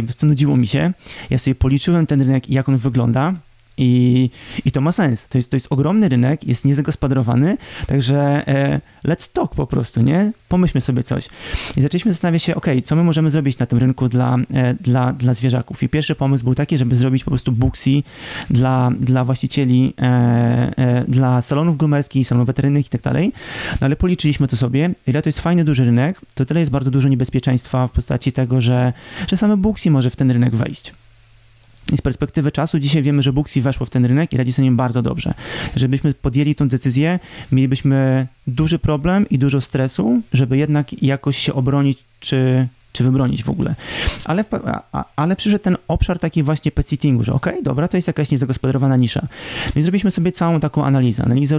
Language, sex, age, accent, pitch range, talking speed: Polish, male, 30-49, native, 125-150 Hz, 190 wpm